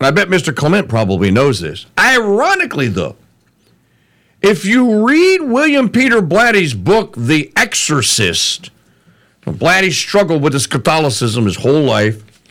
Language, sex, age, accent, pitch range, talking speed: English, male, 50-69, American, 130-190 Hz, 125 wpm